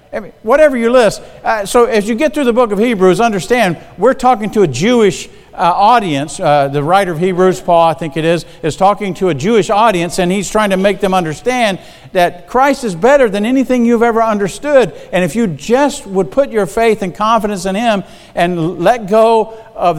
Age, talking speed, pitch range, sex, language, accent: 50-69, 205 wpm, 160-220 Hz, male, English, American